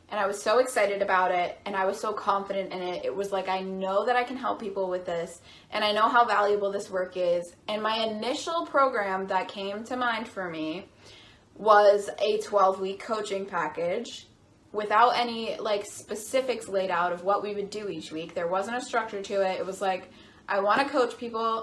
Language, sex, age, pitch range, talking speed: English, female, 20-39, 190-235 Hz, 210 wpm